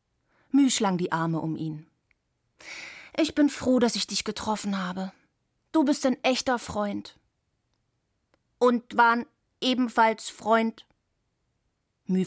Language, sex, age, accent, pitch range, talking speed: German, female, 30-49, German, 185-250 Hz, 115 wpm